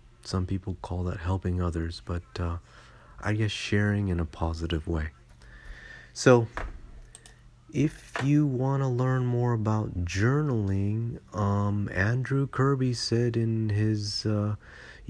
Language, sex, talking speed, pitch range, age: English, male, 125 wpm, 90-110 Hz, 30-49